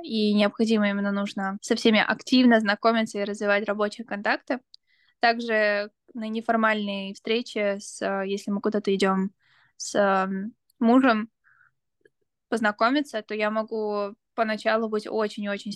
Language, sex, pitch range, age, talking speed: Russian, female, 210-255 Hz, 10-29, 110 wpm